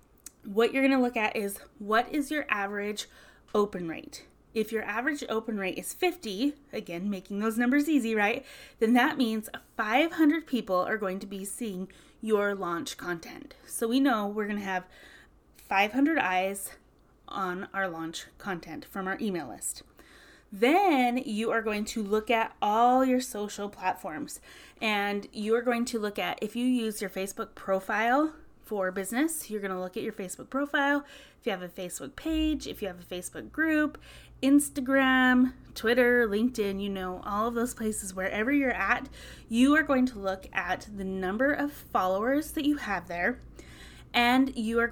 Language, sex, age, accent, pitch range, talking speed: English, female, 20-39, American, 195-255 Hz, 170 wpm